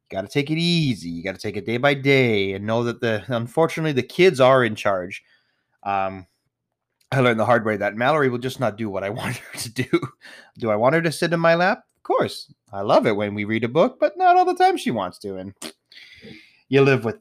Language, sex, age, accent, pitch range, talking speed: English, male, 30-49, American, 105-155 Hz, 245 wpm